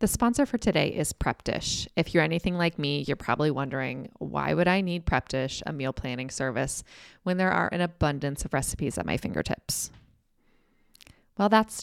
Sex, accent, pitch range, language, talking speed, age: female, American, 145-180 Hz, English, 180 wpm, 20-39